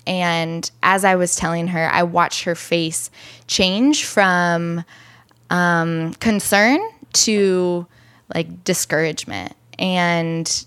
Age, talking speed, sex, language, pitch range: 10-29, 100 wpm, female, English, 160-180 Hz